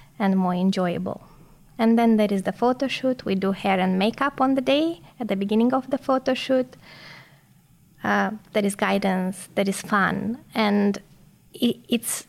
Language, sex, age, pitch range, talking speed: English, female, 20-39, 190-220 Hz, 165 wpm